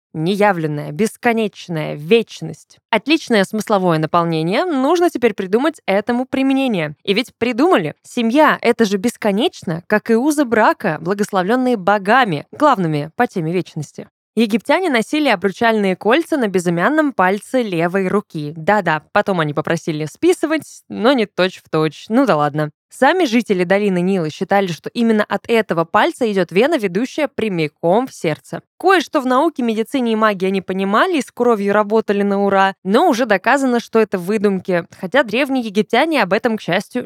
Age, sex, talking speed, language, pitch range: 20-39, female, 145 wpm, Russian, 190-255 Hz